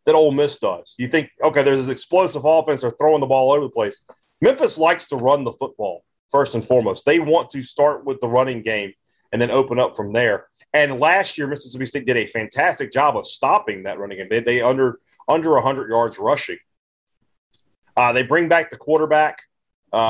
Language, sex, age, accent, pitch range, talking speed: English, male, 40-59, American, 120-155 Hz, 210 wpm